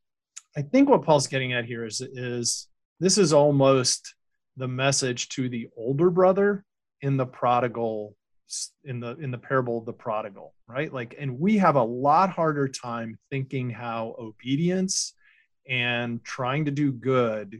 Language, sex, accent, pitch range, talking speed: English, male, American, 120-145 Hz, 155 wpm